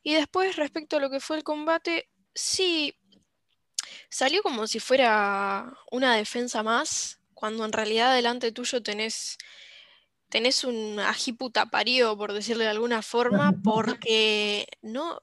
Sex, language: female, Spanish